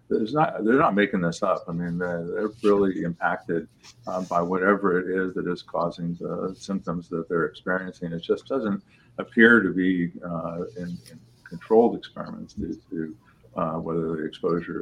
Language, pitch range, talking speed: English, 85-100 Hz, 170 wpm